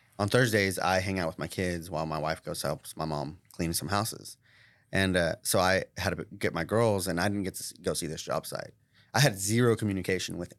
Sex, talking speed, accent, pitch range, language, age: male, 245 wpm, American, 90-110 Hz, English, 20-39